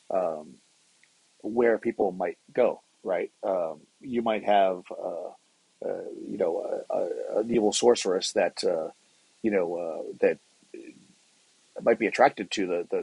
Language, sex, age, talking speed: English, male, 40-59, 145 wpm